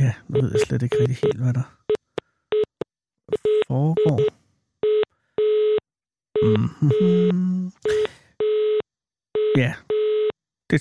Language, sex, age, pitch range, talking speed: Danish, male, 60-79, 115-170 Hz, 80 wpm